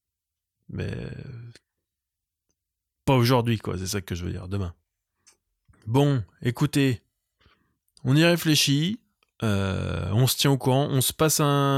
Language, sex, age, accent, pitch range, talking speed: French, male, 20-39, French, 95-130 Hz, 130 wpm